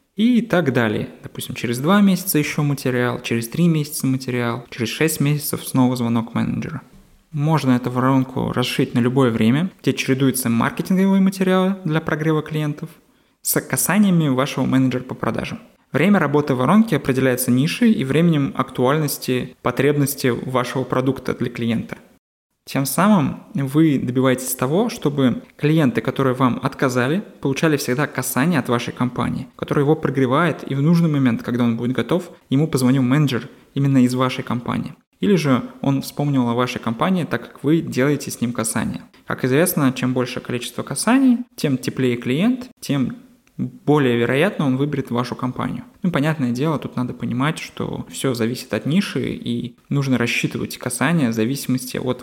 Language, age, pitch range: Russian, 20-39, 125-155 Hz